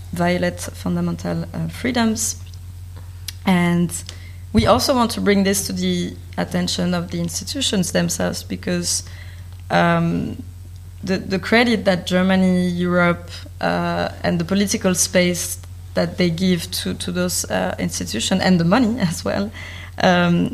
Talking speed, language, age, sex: 130 wpm, German, 30-49, female